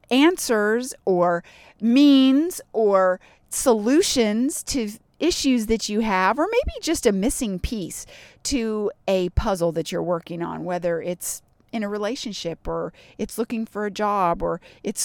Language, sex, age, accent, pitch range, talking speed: English, female, 40-59, American, 180-255 Hz, 145 wpm